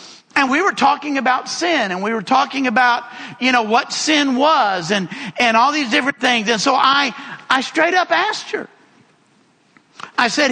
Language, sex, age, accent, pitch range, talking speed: English, male, 50-69, American, 220-290 Hz, 185 wpm